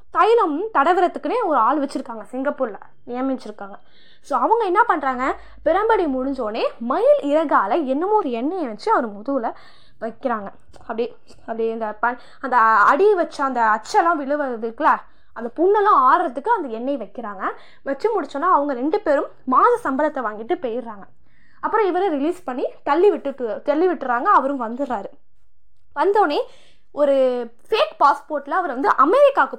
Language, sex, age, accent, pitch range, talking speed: Tamil, female, 20-39, native, 255-360 Hz, 130 wpm